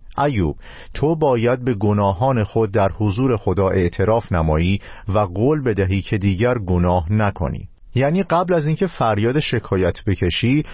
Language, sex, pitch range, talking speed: Persian, male, 95-130 Hz, 140 wpm